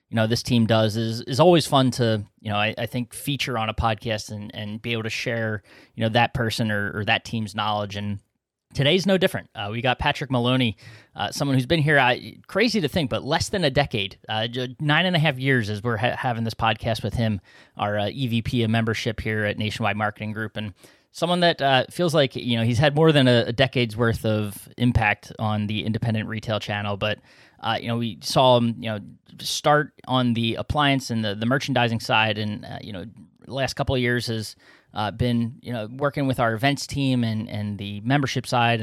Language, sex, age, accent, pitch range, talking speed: English, male, 20-39, American, 110-130 Hz, 225 wpm